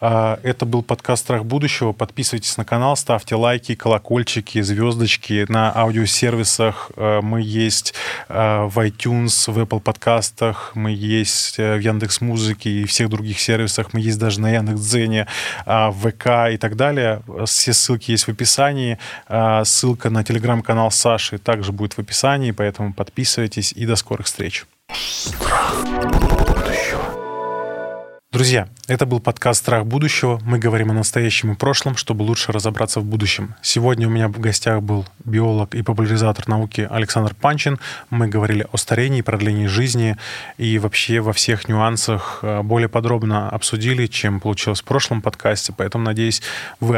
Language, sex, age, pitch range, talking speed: Russian, male, 20-39, 110-120 Hz, 140 wpm